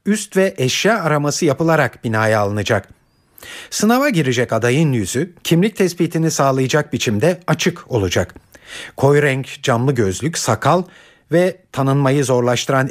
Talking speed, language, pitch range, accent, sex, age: 115 wpm, Turkish, 115-165 Hz, native, male, 50-69